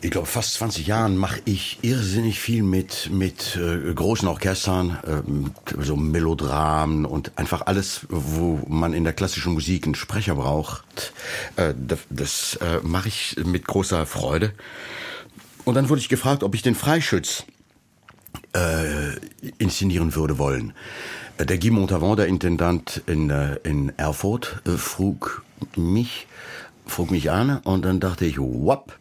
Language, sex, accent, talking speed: German, male, German, 150 wpm